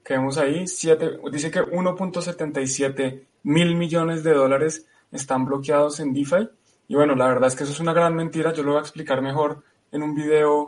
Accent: Colombian